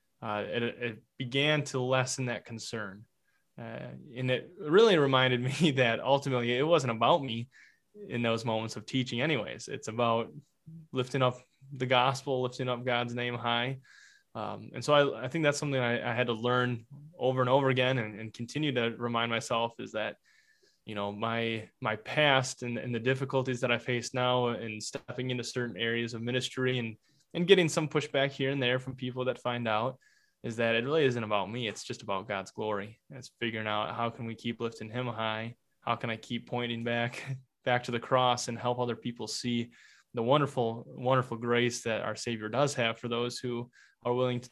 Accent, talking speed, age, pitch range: American, 200 wpm, 20-39, 115-135 Hz